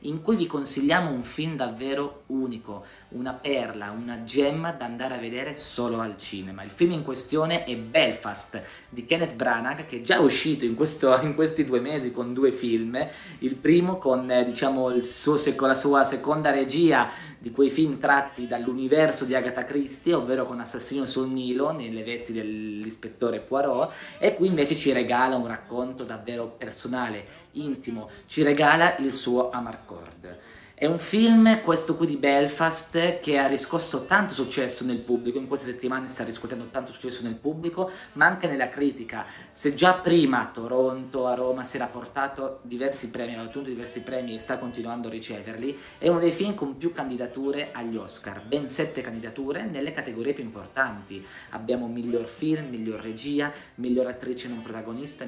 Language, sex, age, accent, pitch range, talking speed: Italian, male, 20-39, native, 120-145 Hz, 170 wpm